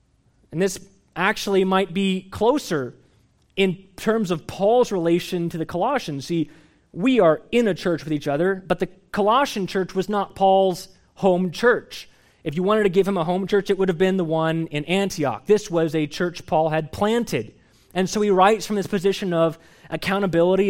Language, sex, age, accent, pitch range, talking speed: English, male, 20-39, American, 155-195 Hz, 190 wpm